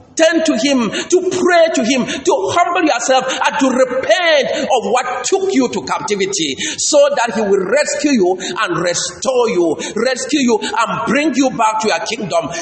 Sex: male